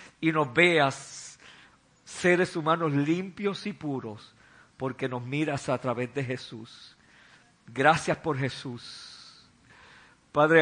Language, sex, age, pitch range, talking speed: Spanish, male, 50-69, 115-155 Hz, 105 wpm